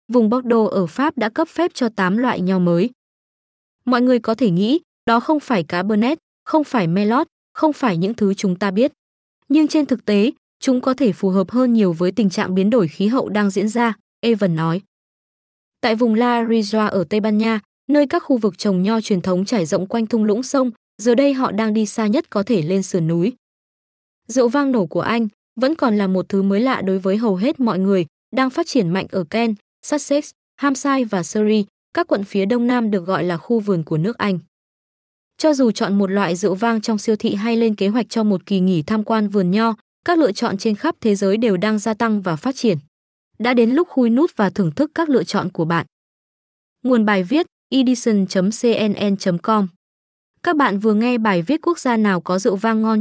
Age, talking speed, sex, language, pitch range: 20-39, 220 wpm, female, Vietnamese, 195-245 Hz